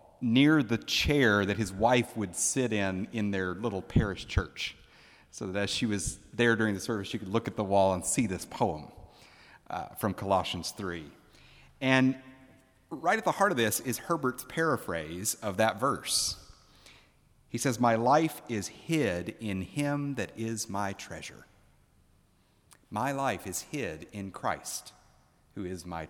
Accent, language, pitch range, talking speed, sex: American, English, 100-130 Hz, 165 wpm, male